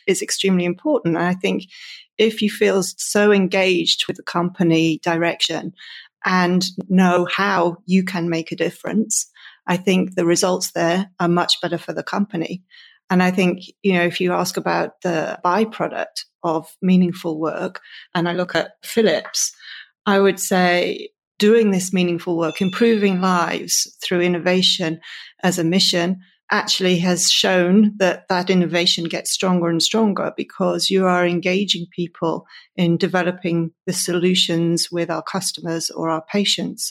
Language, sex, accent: English, female, British